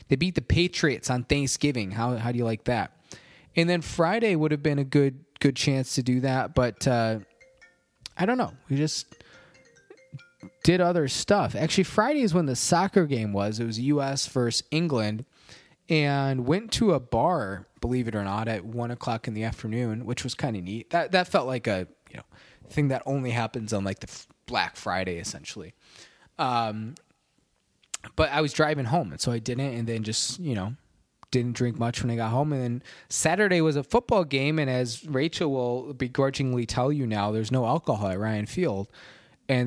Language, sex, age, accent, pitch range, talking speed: English, male, 20-39, American, 115-155 Hz, 195 wpm